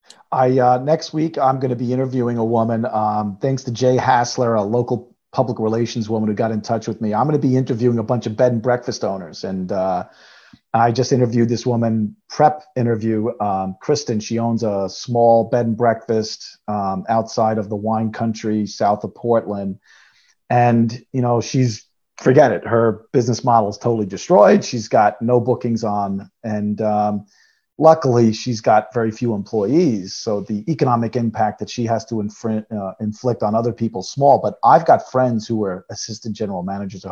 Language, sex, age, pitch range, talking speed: English, male, 40-59, 105-125 Hz, 185 wpm